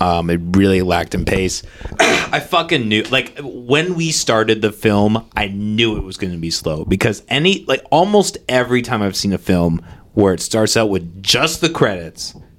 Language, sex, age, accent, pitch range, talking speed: English, male, 30-49, American, 90-120 Hz, 195 wpm